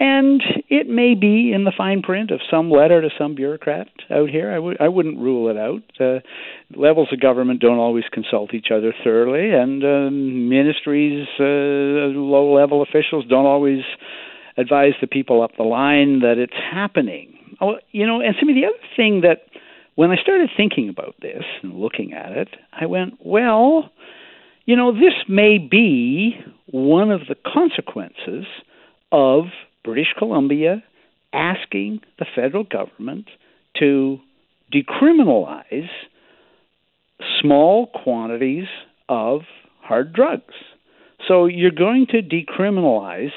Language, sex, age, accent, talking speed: English, male, 60-79, American, 135 wpm